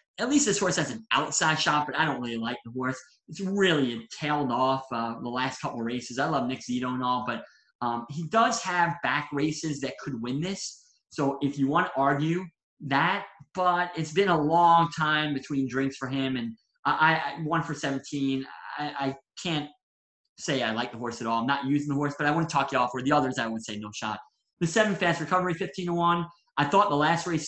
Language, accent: English, American